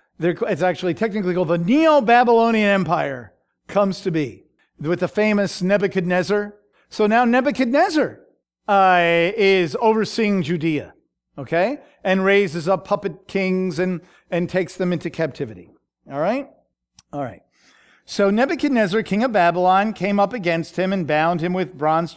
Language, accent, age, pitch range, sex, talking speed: English, American, 50-69, 165-220 Hz, male, 140 wpm